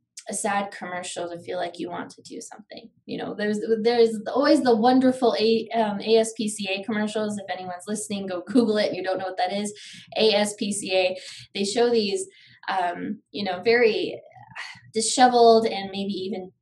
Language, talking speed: English, 165 wpm